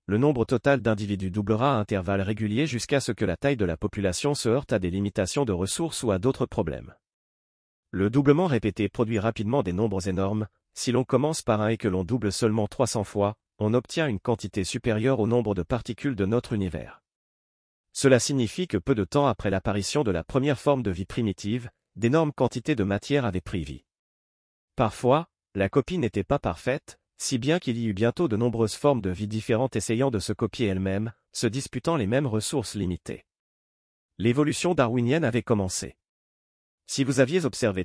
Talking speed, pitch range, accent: 185 wpm, 100-130 Hz, French